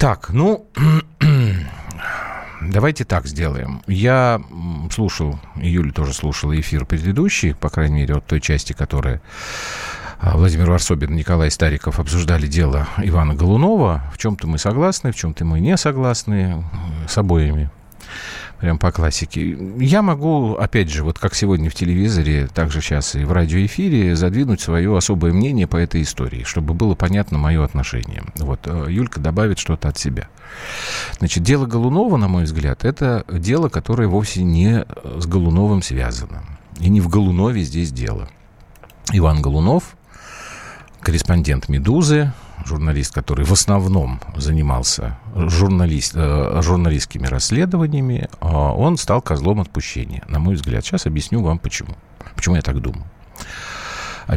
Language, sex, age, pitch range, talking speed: Russian, male, 40-59, 75-105 Hz, 135 wpm